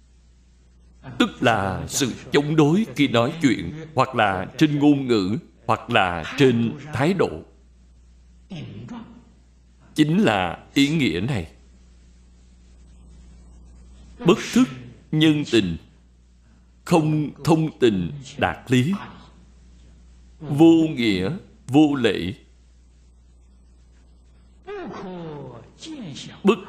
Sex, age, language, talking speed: male, 60-79, Vietnamese, 85 wpm